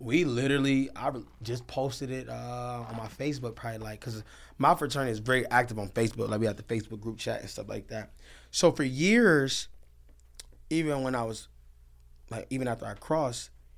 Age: 20-39